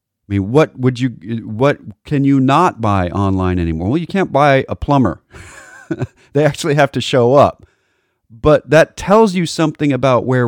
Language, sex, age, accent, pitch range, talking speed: English, male, 40-59, American, 110-145 Hz, 175 wpm